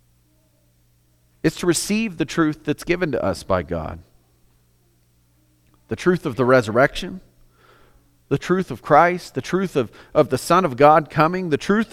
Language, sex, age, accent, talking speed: English, male, 40-59, American, 155 wpm